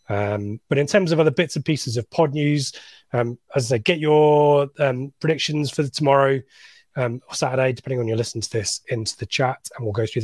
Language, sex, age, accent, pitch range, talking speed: English, male, 20-39, British, 120-140 Hz, 225 wpm